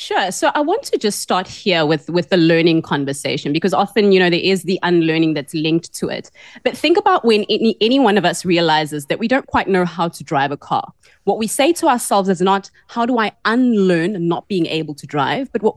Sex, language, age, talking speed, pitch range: female, English, 20-39, 240 wpm, 170-225 Hz